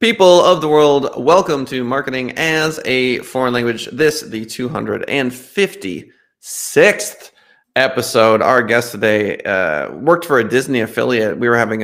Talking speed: 135 wpm